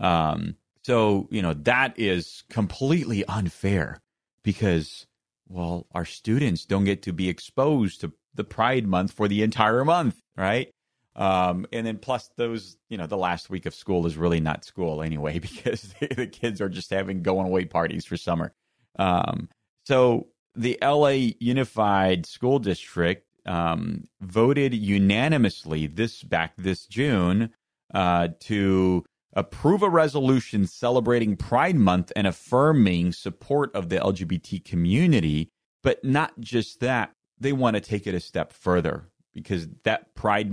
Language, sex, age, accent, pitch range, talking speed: English, male, 30-49, American, 90-115 Hz, 145 wpm